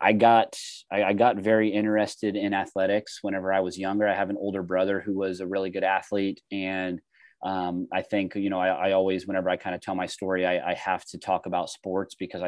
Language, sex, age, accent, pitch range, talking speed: English, male, 30-49, American, 95-100 Hz, 230 wpm